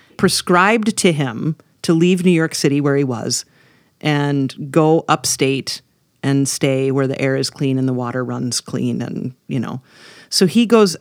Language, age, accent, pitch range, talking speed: English, 40-59, American, 135-165 Hz, 175 wpm